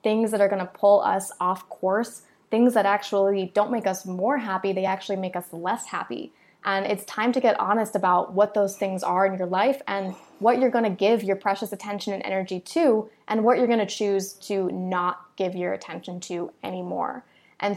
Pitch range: 190-220 Hz